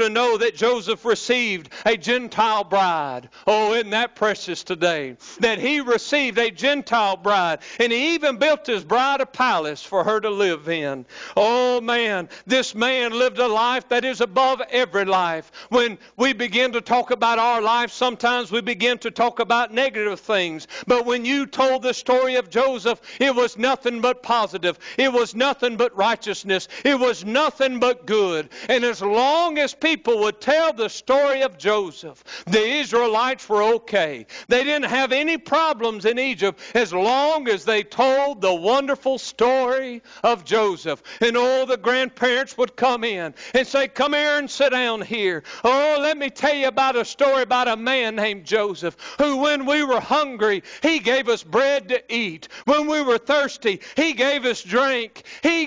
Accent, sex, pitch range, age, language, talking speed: American, male, 215-265 Hz, 60-79, English, 175 wpm